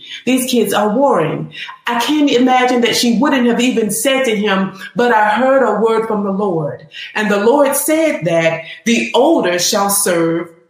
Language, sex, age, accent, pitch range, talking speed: English, female, 40-59, American, 170-245 Hz, 180 wpm